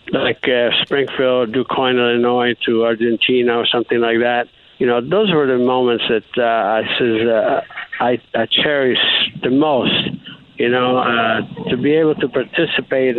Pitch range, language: 110-125 Hz, English